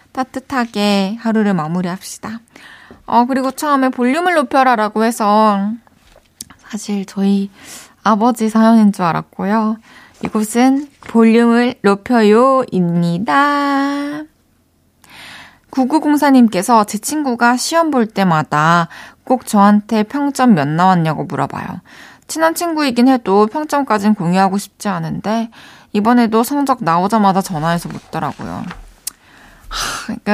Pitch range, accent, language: 195-250 Hz, native, Korean